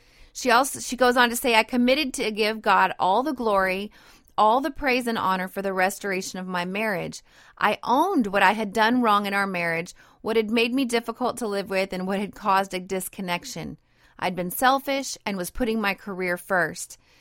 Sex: female